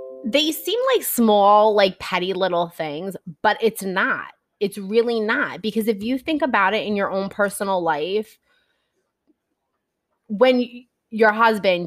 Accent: American